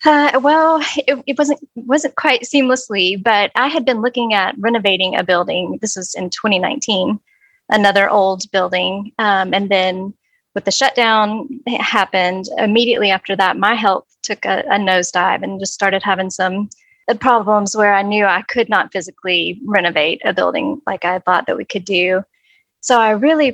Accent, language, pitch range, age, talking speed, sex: American, English, 190-240 Hz, 20-39, 170 wpm, female